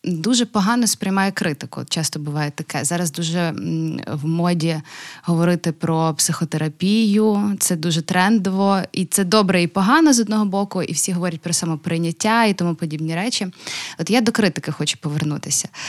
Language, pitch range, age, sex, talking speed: Ukrainian, 170-210 Hz, 20-39, female, 150 wpm